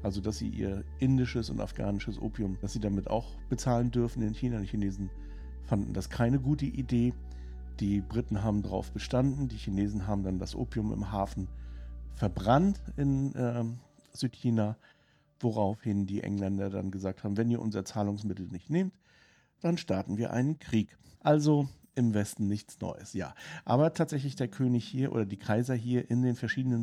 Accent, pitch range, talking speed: German, 100-130 Hz, 170 wpm